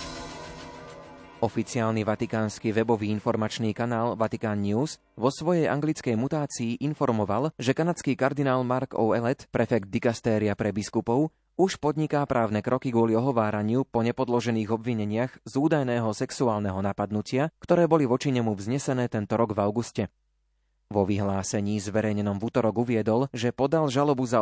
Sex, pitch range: male, 110-130 Hz